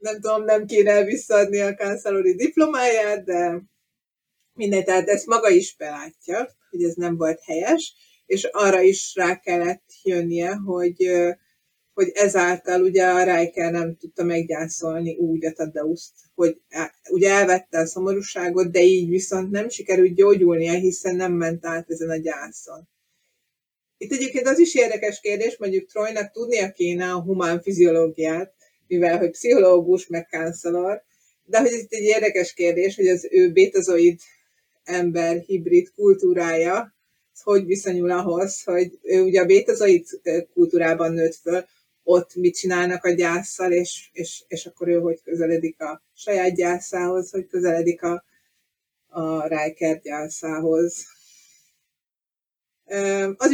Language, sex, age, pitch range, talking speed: Hungarian, female, 30-49, 170-215 Hz, 135 wpm